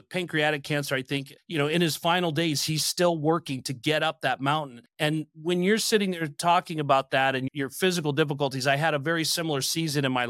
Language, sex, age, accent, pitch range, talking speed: English, male, 40-59, American, 130-155 Hz, 220 wpm